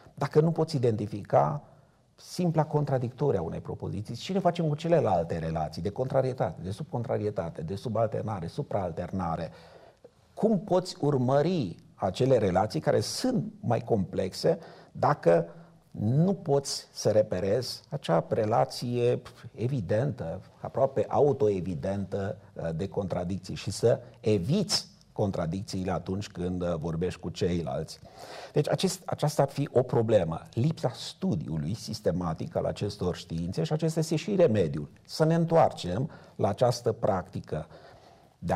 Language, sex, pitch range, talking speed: Romanian, male, 95-155 Hz, 120 wpm